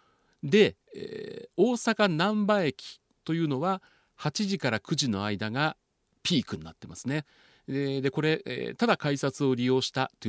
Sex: male